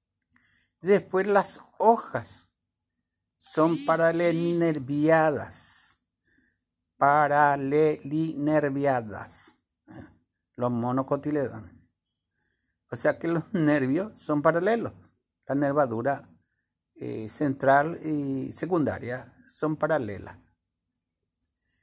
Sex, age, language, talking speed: male, 60-79, Spanish, 65 wpm